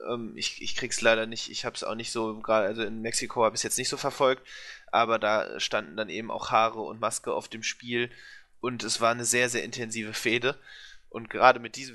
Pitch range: 115-145 Hz